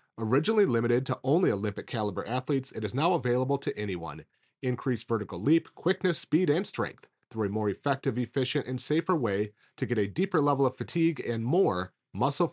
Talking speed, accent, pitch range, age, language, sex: 180 wpm, American, 110-140 Hz, 30-49, English, male